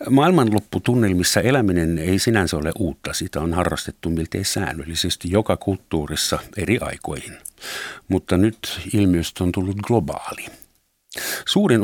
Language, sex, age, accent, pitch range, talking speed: Finnish, male, 60-79, native, 90-110 Hz, 110 wpm